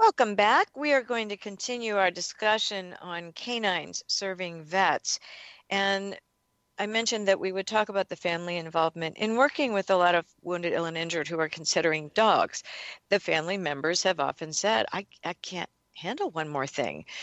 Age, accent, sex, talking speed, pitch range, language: 50-69, American, female, 180 wpm, 170-215 Hz, English